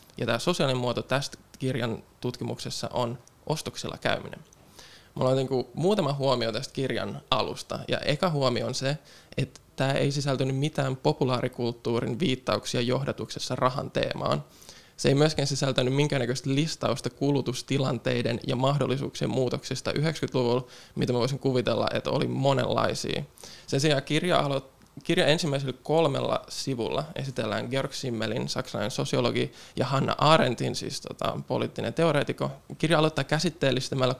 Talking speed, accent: 130 wpm, native